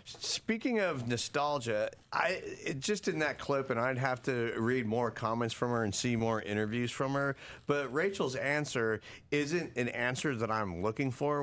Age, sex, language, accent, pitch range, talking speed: 40-59, male, English, American, 115-135 Hz, 175 wpm